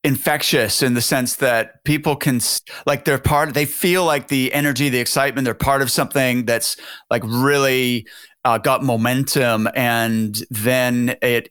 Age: 30-49